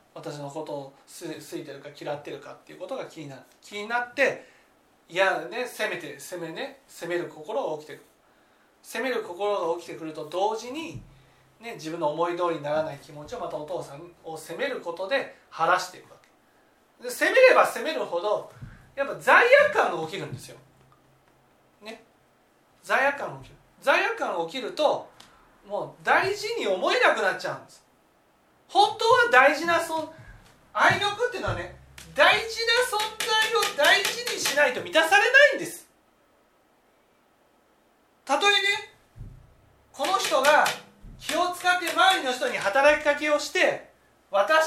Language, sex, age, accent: Japanese, male, 40-59, native